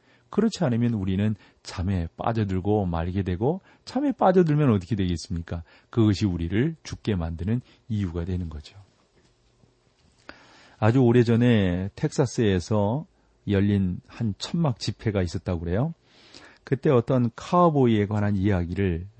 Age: 40-59